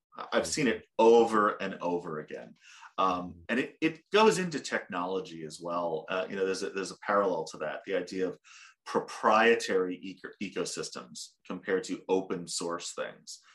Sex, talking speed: male, 165 wpm